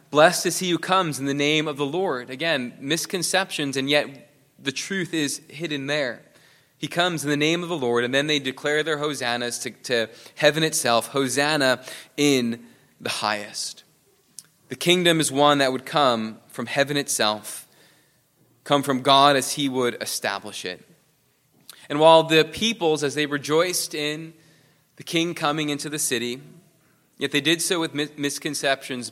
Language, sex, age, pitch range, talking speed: English, male, 20-39, 135-165 Hz, 165 wpm